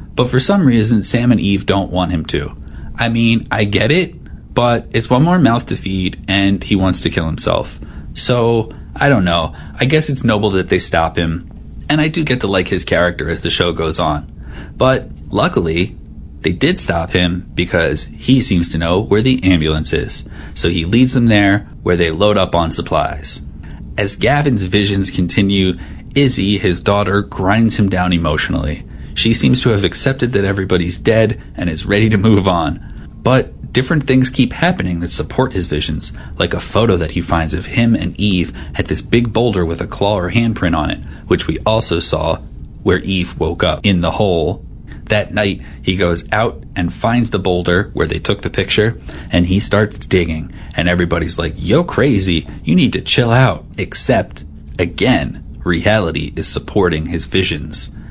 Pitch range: 85-110 Hz